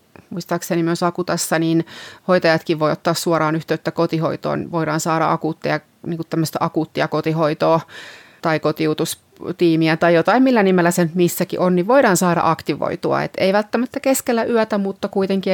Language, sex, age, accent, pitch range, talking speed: Finnish, female, 30-49, native, 160-180 Hz, 140 wpm